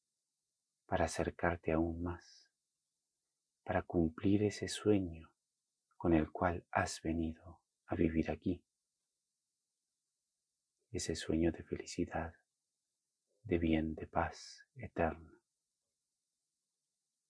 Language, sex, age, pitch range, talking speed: Spanish, male, 30-49, 80-95 Hz, 85 wpm